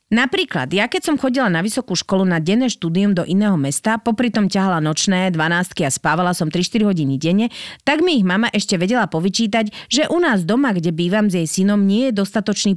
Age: 30-49